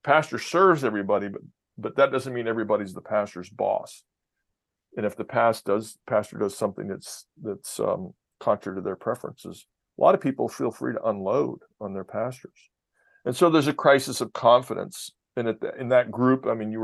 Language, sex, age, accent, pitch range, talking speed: English, male, 50-69, American, 105-125 Hz, 190 wpm